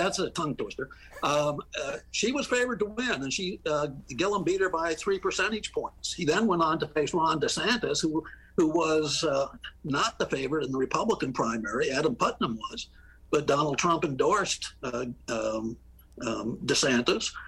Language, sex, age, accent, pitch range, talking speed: English, male, 60-79, American, 130-185 Hz, 175 wpm